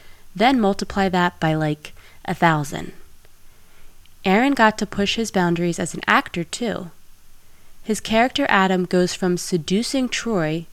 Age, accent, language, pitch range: 20-39, American, English, 160-205 Hz